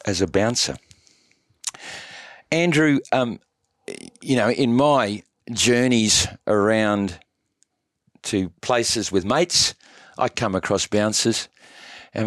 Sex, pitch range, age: male, 95-130 Hz, 50-69